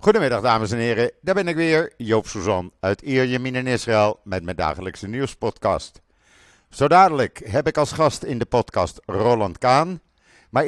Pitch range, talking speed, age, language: 105-135 Hz, 170 wpm, 50-69, Dutch